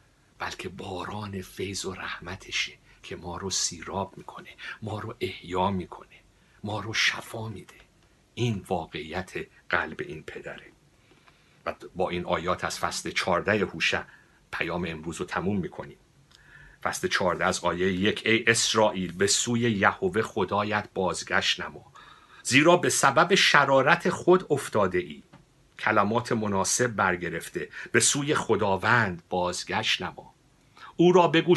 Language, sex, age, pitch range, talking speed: Persian, male, 60-79, 95-130 Hz, 125 wpm